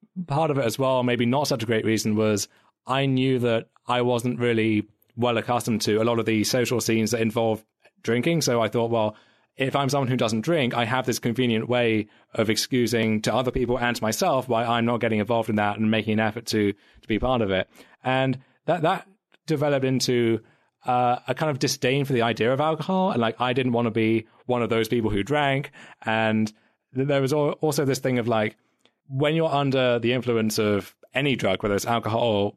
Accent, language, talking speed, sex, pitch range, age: British, English, 215 wpm, male, 110-130 Hz, 30-49